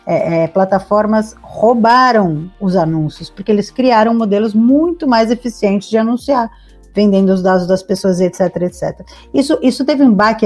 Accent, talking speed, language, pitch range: Brazilian, 155 wpm, Portuguese, 195-260 Hz